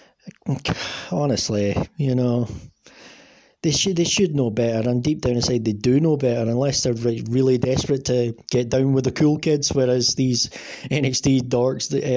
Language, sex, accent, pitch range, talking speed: English, male, British, 120-145 Hz, 165 wpm